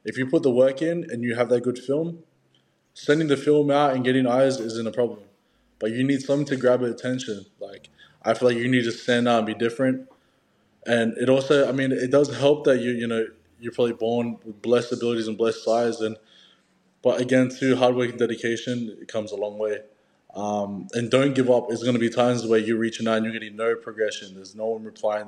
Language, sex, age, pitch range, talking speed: English, male, 20-39, 110-125 Hz, 235 wpm